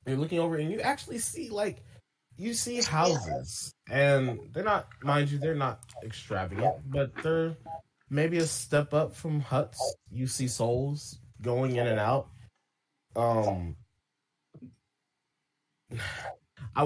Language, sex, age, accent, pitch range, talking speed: English, male, 20-39, American, 110-140 Hz, 130 wpm